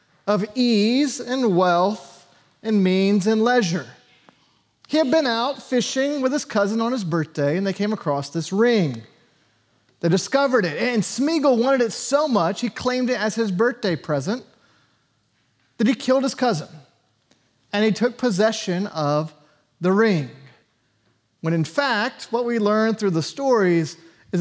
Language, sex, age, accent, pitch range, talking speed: English, male, 30-49, American, 160-235 Hz, 155 wpm